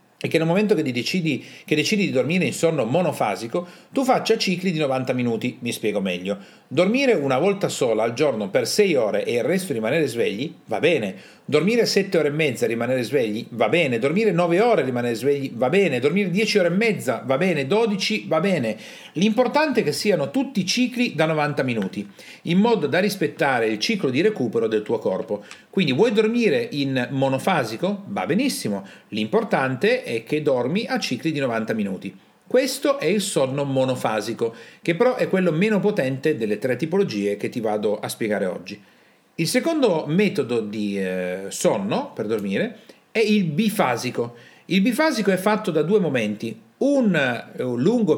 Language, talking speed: Italian, 175 wpm